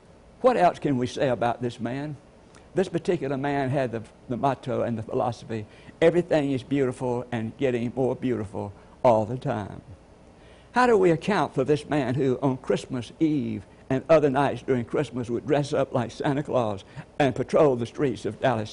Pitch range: 125-165 Hz